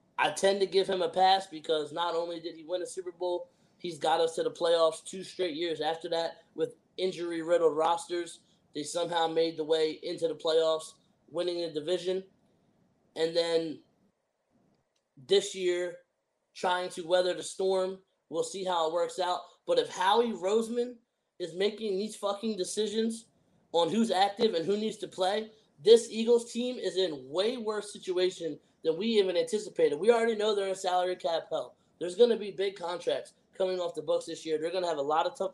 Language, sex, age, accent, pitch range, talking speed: English, male, 20-39, American, 170-215 Hz, 190 wpm